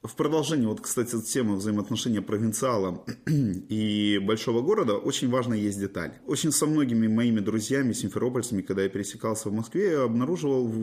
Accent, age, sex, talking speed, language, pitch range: native, 30-49, male, 145 wpm, Russian, 105-145 Hz